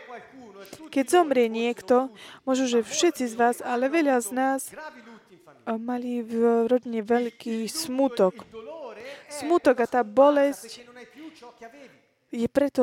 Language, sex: Slovak, female